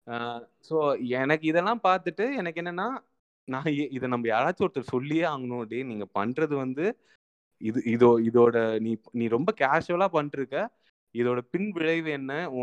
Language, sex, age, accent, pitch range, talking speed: Tamil, male, 20-39, native, 120-160 Hz, 145 wpm